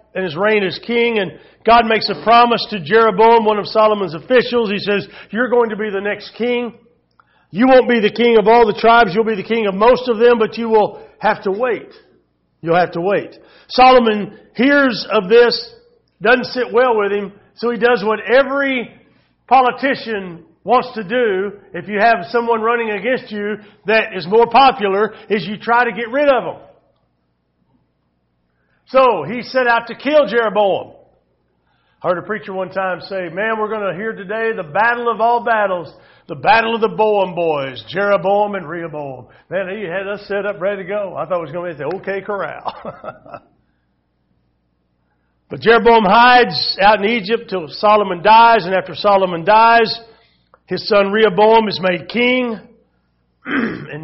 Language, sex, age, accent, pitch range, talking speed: English, male, 50-69, American, 185-230 Hz, 180 wpm